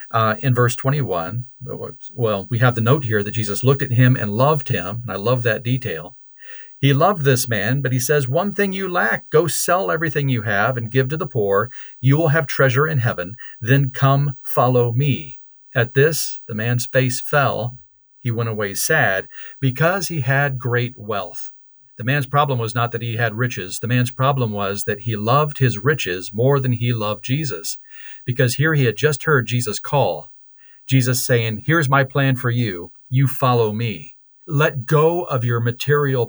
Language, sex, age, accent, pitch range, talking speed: English, male, 40-59, American, 120-145 Hz, 190 wpm